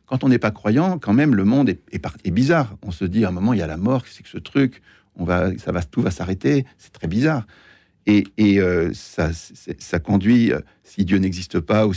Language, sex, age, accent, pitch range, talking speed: French, male, 60-79, French, 100-135 Hz, 255 wpm